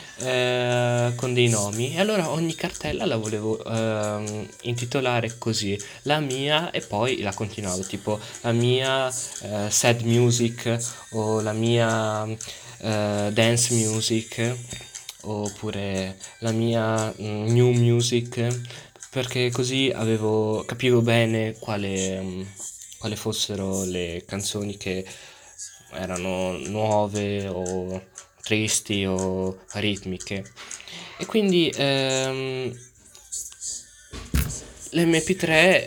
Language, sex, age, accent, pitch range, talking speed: Italian, male, 20-39, native, 105-125 Hz, 95 wpm